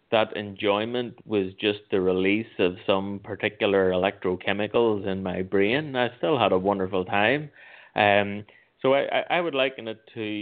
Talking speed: 155 wpm